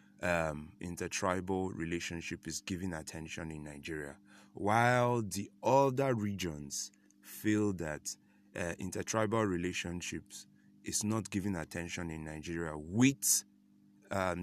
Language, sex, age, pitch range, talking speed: English, male, 20-39, 90-105 Hz, 110 wpm